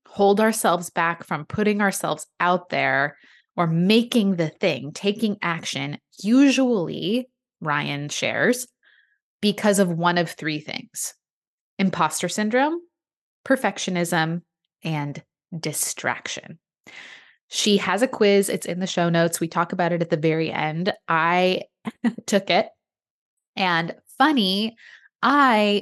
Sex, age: female, 20-39